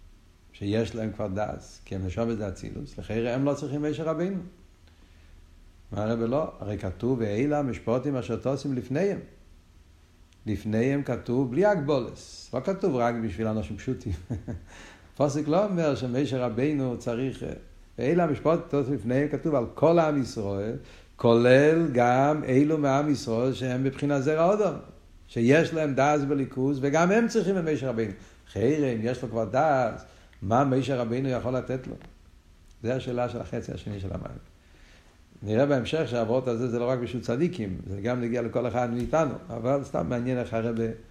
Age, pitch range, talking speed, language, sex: 60-79, 100-135 Hz, 155 wpm, Hebrew, male